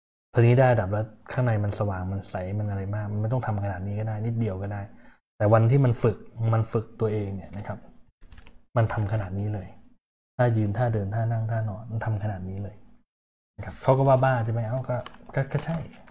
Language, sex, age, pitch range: Thai, male, 20-39, 100-120 Hz